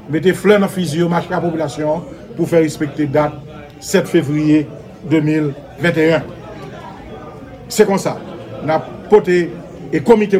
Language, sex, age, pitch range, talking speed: French, male, 50-69, 155-205 Hz, 135 wpm